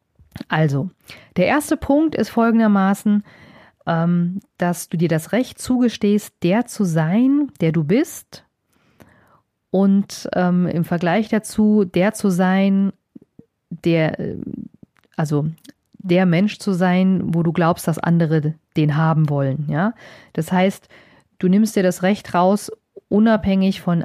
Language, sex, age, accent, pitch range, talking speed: German, female, 40-59, German, 170-215 Hz, 125 wpm